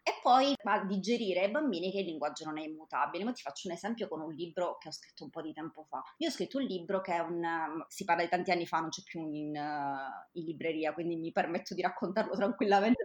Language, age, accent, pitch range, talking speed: Italian, 20-39, native, 160-205 Hz, 255 wpm